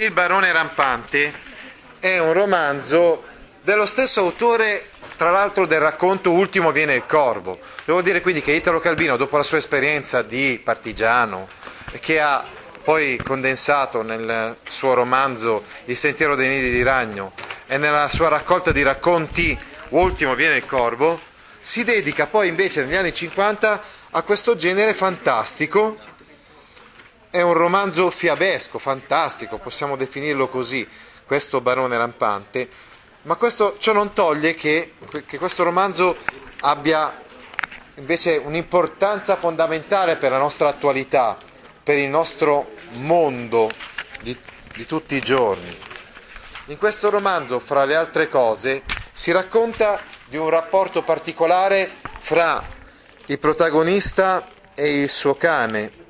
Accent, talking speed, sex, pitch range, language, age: native, 130 wpm, male, 140-190 Hz, Italian, 30-49